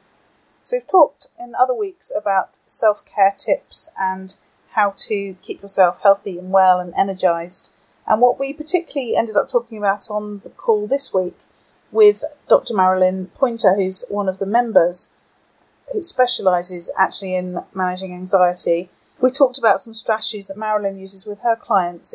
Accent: British